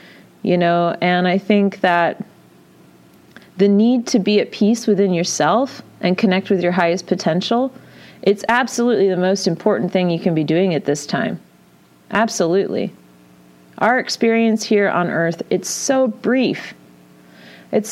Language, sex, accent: English, female, American